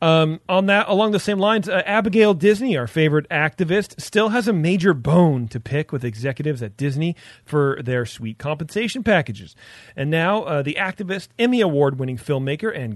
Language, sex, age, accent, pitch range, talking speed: English, male, 40-59, American, 125-175 Hz, 180 wpm